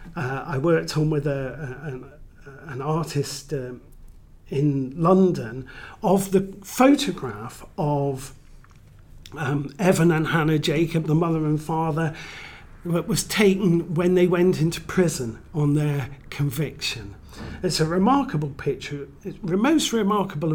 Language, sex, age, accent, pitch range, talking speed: English, male, 40-59, British, 140-170 Hz, 130 wpm